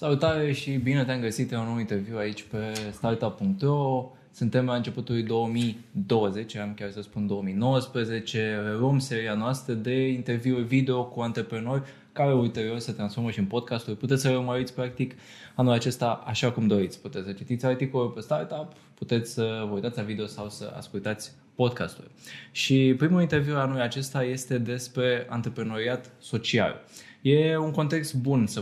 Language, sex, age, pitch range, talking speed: Romanian, male, 20-39, 110-135 Hz, 155 wpm